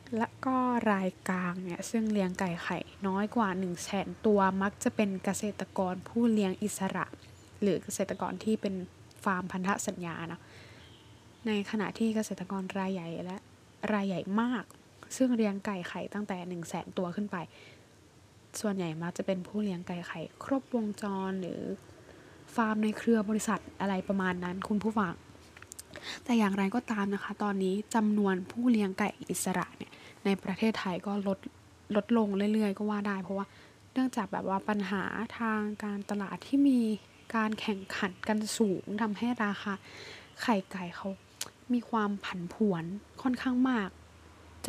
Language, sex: Thai, female